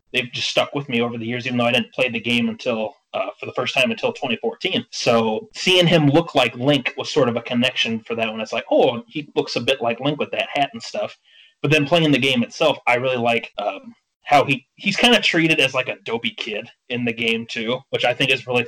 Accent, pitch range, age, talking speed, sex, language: American, 120-165 Hz, 30-49, 260 wpm, male, English